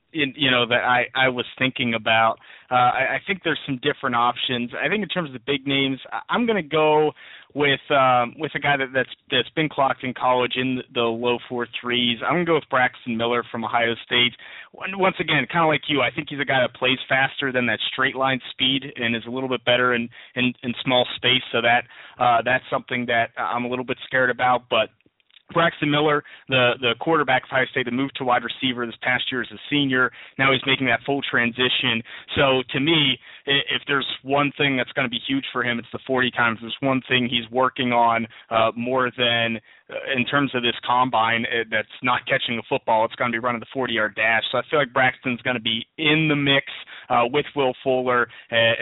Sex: male